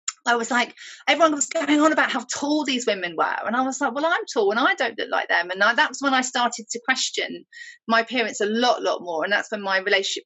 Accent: British